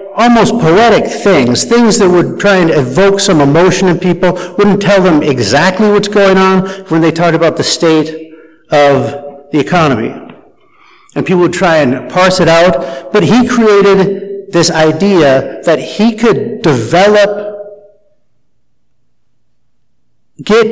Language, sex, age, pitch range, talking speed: English, male, 50-69, 145-190 Hz, 135 wpm